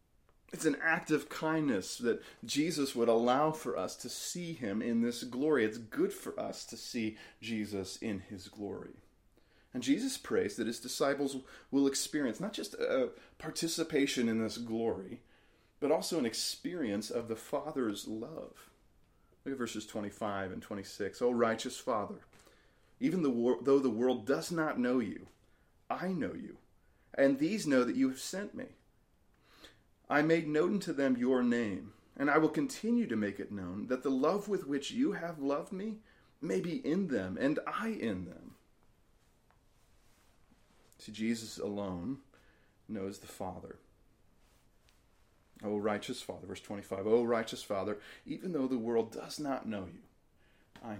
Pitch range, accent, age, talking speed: 110-150 Hz, American, 30-49, 155 wpm